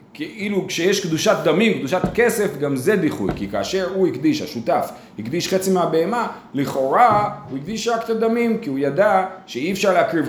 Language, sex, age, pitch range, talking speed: Hebrew, male, 30-49, 135-195 Hz, 170 wpm